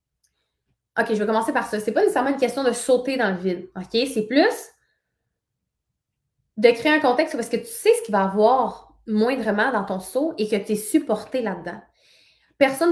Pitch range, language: 200-245 Hz, French